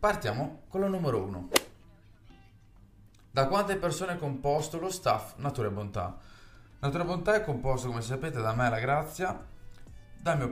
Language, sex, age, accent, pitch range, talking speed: Italian, male, 30-49, native, 110-140 Hz, 150 wpm